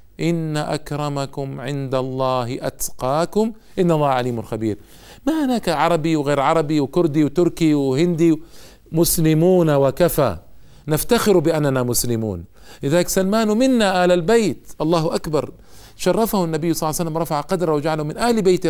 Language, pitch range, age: Arabic, 135-175 Hz, 50-69